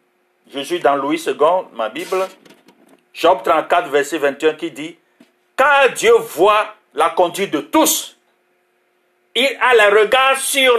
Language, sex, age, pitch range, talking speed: French, male, 50-69, 195-330 Hz, 140 wpm